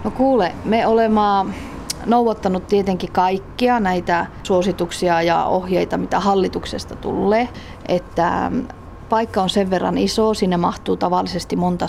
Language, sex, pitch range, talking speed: Finnish, female, 180-215 Hz, 120 wpm